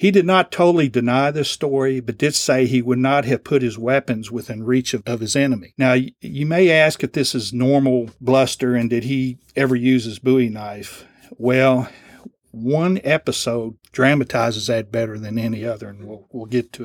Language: English